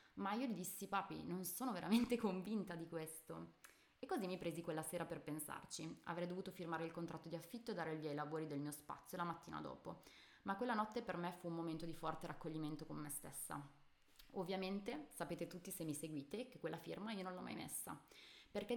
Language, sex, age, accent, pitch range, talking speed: Italian, female, 20-39, native, 160-195 Hz, 215 wpm